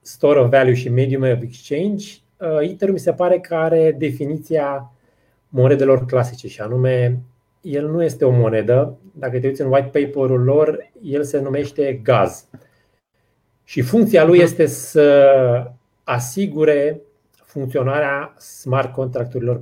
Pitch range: 120-150 Hz